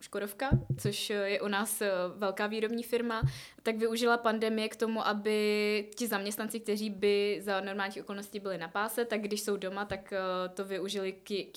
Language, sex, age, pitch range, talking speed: Czech, female, 20-39, 185-210 Hz, 165 wpm